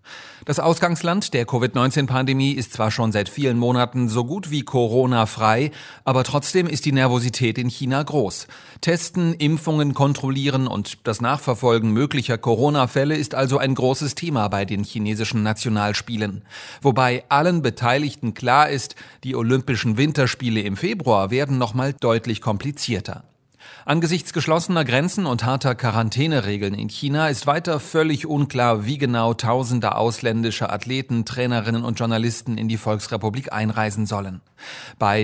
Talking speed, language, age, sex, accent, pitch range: 135 wpm, German, 40-59, male, German, 115-145 Hz